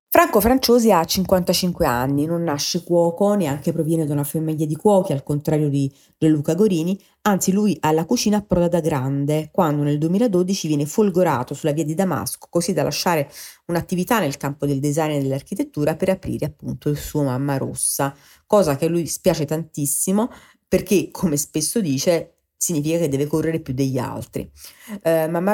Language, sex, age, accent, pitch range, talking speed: Italian, female, 30-49, native, 145-200 Hz, 170 wpm